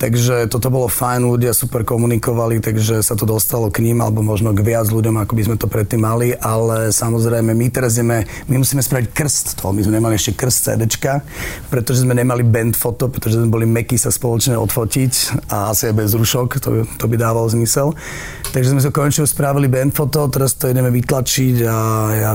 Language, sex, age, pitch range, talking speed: Slovak, male, 40-59, 110-130 Hz, 205 wpm